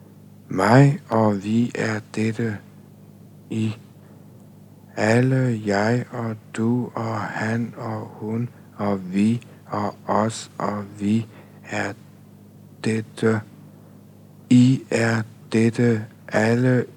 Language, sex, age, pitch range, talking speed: Danish, male, 60-79, 105-120 Hz, 90 wpm